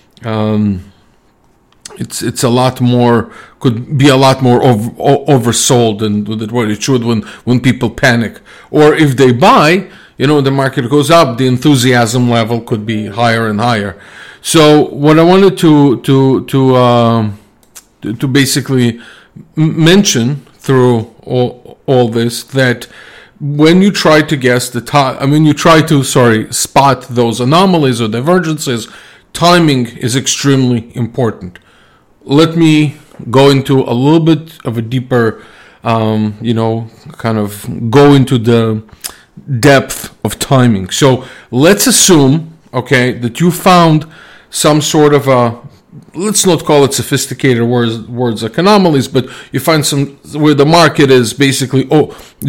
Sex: male